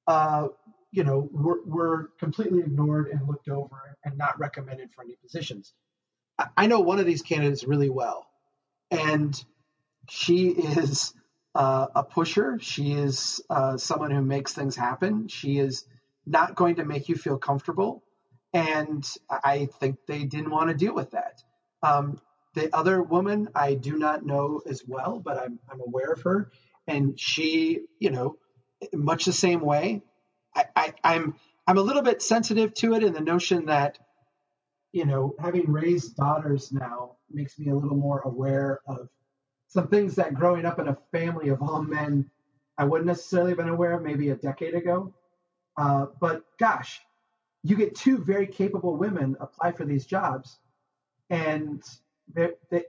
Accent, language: American, English